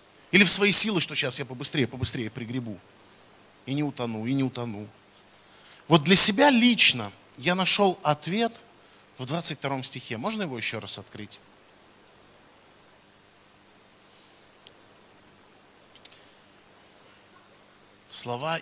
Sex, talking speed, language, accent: male, 105 wpm, Russian, native